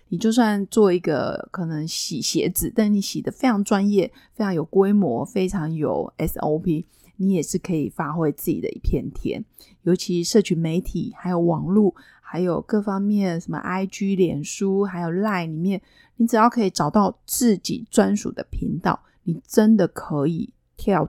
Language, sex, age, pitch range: Chinese, female, 30-49, 170-210 Hz